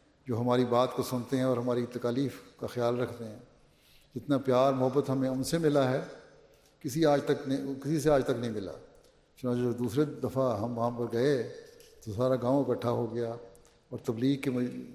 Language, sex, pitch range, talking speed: English, male, 120-135 Hz, 195 wpm